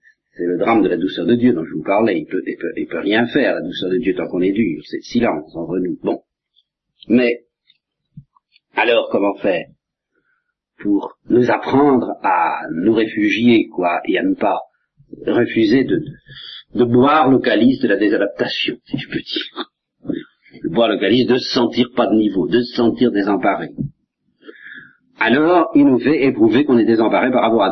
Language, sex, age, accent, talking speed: French, male, 50-69, French, 190 wpm